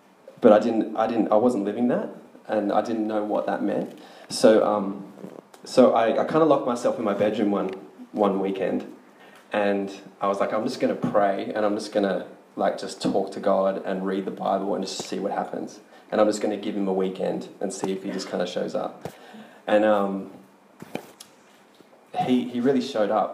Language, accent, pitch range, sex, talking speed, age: English, Australian, 95-105 Hz, male, 215 wpm, 20-39